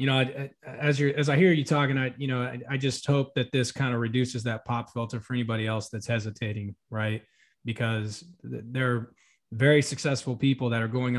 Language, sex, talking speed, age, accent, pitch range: English, male, 205 wpm, 20-39, American, 120-135 Hz